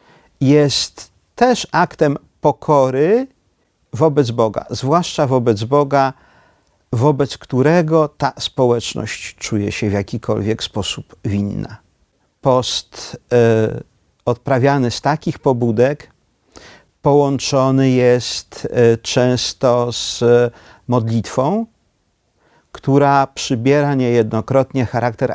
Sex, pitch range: male, 115-150 Hz